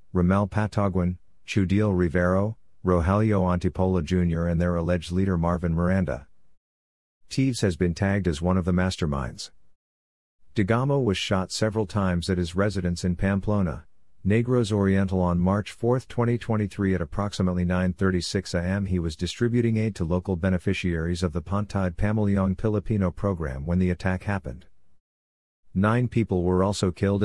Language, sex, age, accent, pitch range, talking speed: English, male, 50-69, American, 85-100 Hz, 140 wpm